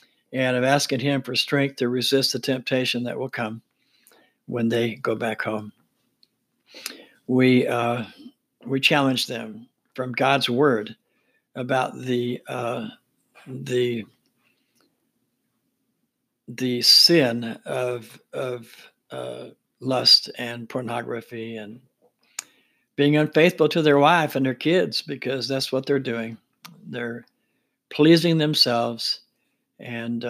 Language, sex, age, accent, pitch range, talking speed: English, male, 60-79, American, 120-140 Hz, 110 wpm